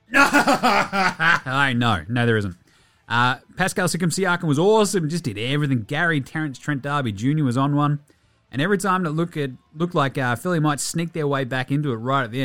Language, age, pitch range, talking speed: English, 30-49, 115-165 Hz, 200 wpm